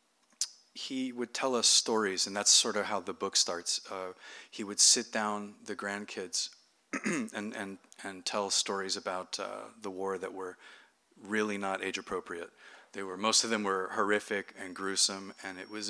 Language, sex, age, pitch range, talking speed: English, male, 30-49, 95-105 Hz, 175 wpm